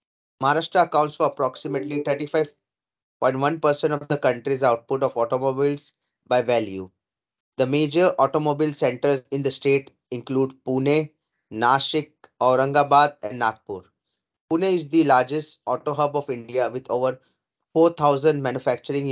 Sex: male